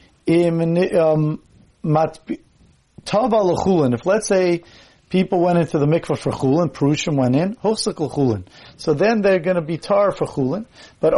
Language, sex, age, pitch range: English, male, 40-59, 150-195 Hz